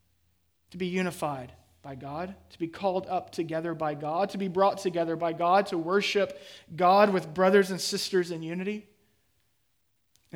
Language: English